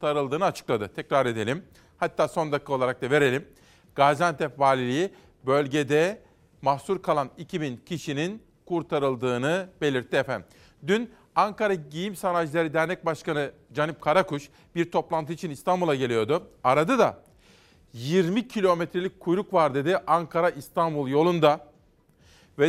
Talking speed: 115 wpm